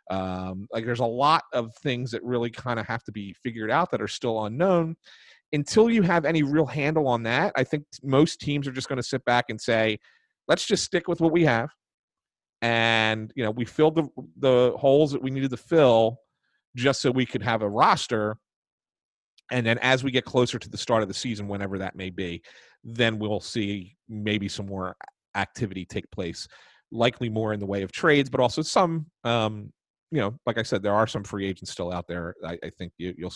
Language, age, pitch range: English, 40-59, 110-140 Hz